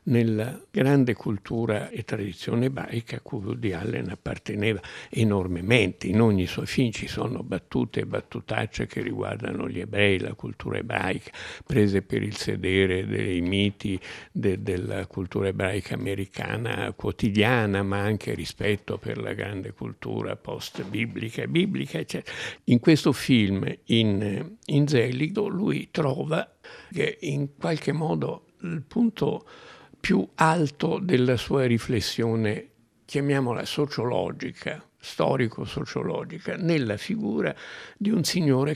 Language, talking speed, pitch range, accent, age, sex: Italian, 120 wpm, 100-140 Hz, native, 60-79, male